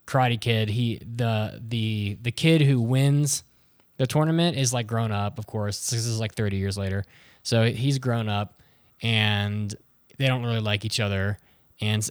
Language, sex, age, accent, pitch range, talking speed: English, male, 20-39, American, 105-120 Hz, 175 wpm